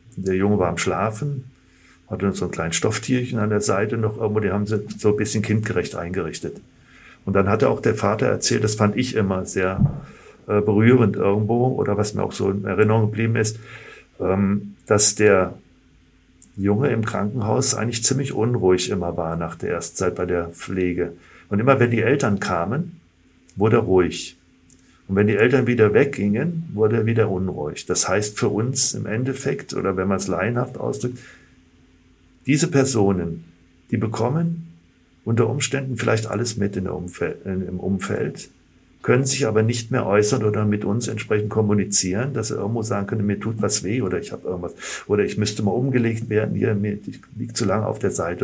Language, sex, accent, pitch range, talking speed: German, male, German, 95-115 Hz, 180 wpm